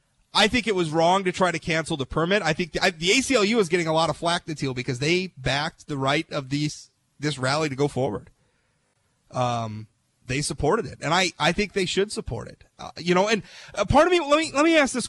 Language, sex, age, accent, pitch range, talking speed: English, male, 30-49, American, 135-185 Hz, 250 wpm